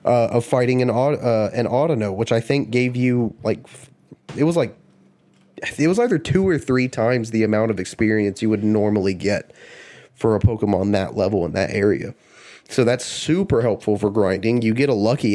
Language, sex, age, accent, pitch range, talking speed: English, male, 30-49, American, 105-140 Hz, 190 wpm